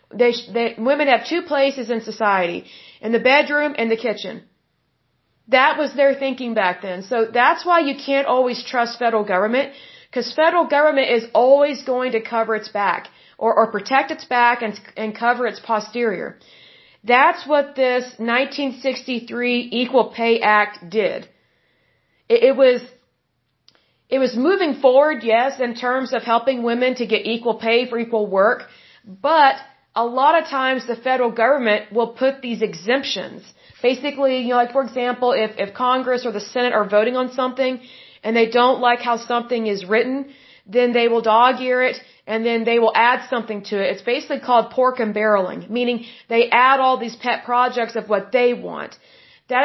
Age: 40-59